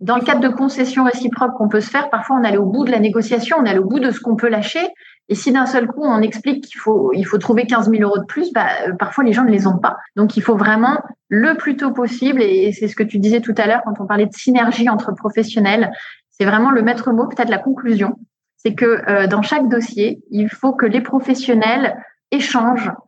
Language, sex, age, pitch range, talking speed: English, female, 20-39, 200-245 Hz, 245 wpm